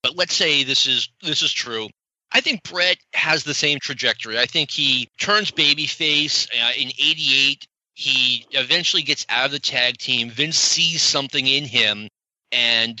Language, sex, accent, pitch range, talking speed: English, male, American, 120-160 Hz, 165 wpm